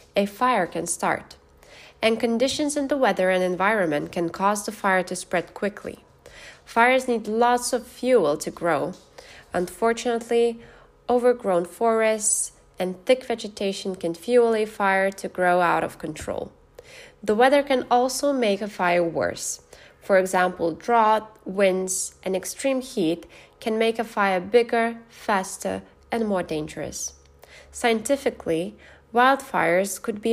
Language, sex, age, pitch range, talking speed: English, female, 20-39, 175-235 Hz, 135 wpm